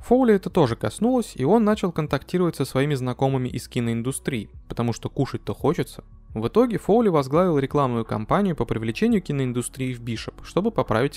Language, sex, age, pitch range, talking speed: Russian, male, 20-39, 115-150 Hz, 165 wpm